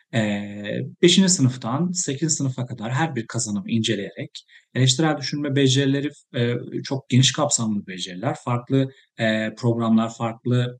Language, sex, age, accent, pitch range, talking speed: Turkish, male, 40-59, native, 115-165 Hz, 120 wpm